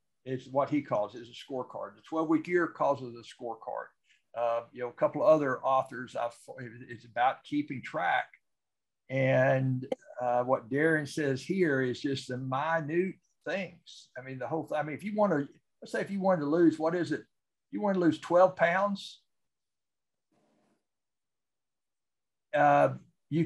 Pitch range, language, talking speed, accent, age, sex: 130-165 Hz, English, 175 wpm, American, 60-79, male